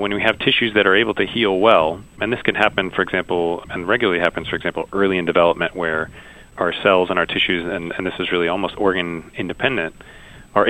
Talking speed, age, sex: 220 wpm, 30-49, male